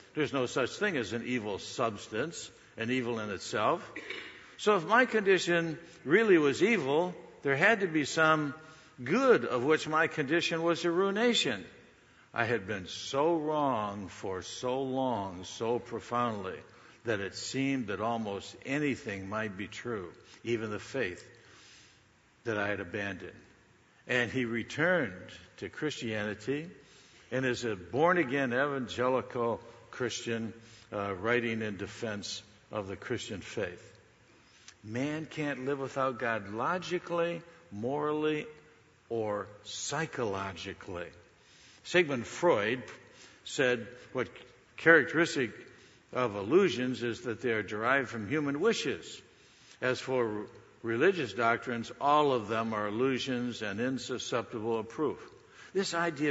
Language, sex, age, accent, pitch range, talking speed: English, male, 60-79, American, 110-150 Hz, 125 wpm